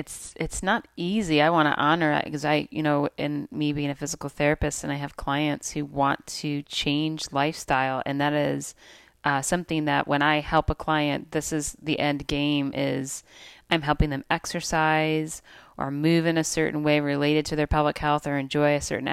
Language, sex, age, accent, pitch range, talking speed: English, female, 30-49, American, 145-160 Hz, 200 wpm